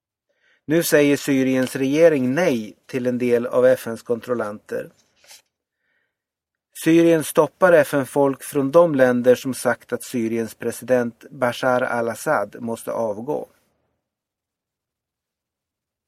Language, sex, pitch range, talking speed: Swedish, male, 125-155 Hz, 95 wpm